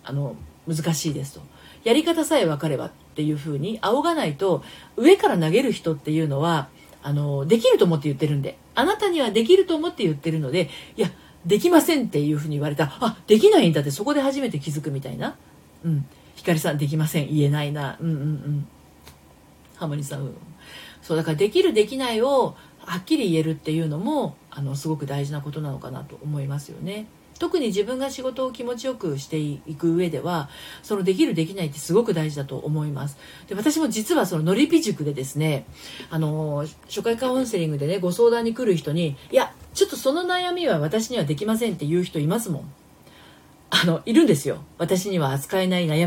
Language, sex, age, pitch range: Japanese, female, 40-59, 150-225 Hz